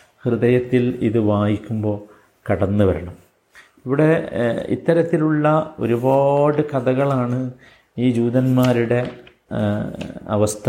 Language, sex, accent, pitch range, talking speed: Malayalam, male, native, 110-130 Hz, 65 wpm